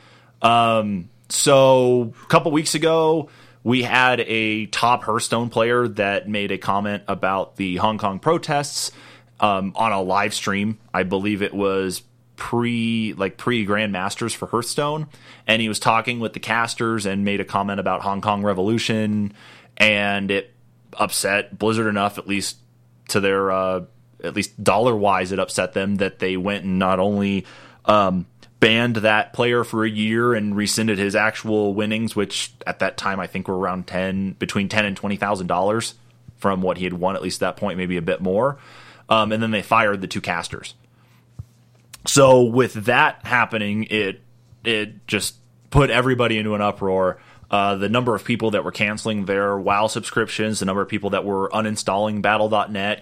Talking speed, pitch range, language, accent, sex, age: 175 wpm, 100-120 Hz, English, American, male, 20-39